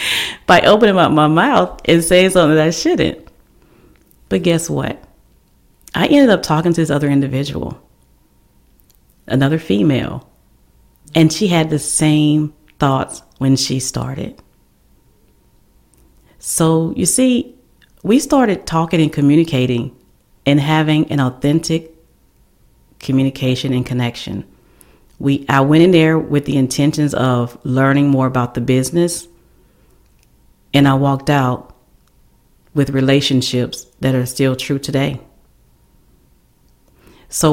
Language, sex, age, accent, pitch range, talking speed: English, female, 40-59, American, 125-155 Hz, 120 wpm